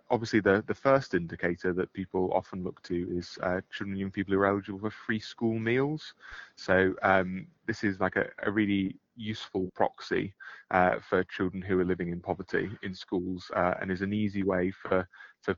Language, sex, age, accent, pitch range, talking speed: English, male, 30-49, British, 95-105 Hz, 195 wpm